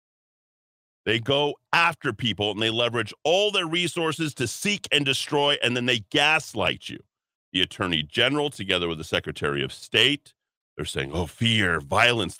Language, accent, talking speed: English, American, 160 wpm